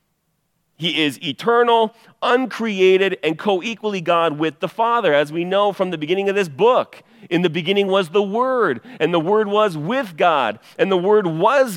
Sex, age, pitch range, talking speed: male, 40-59, 155-215 Hz, 180 wpm